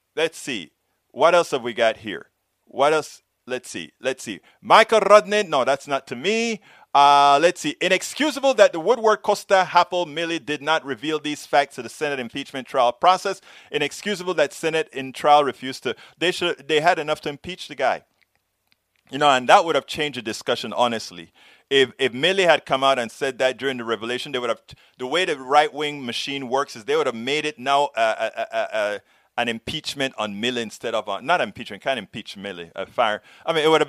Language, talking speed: English, 215 wpm